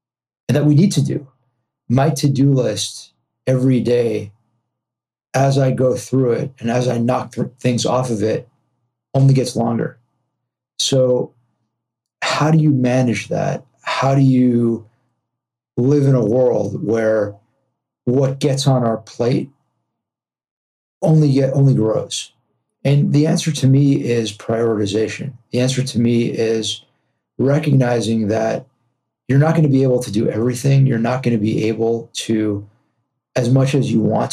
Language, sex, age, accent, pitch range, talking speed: English, male, 40-59, American, 115-135 Hz, 150 wpm